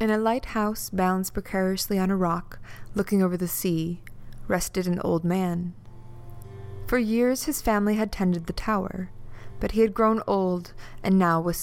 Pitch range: 150-210 Hz